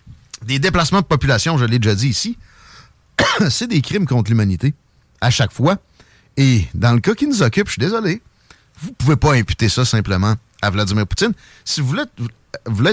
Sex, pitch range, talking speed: male, 110-155 Hz, 185 wpm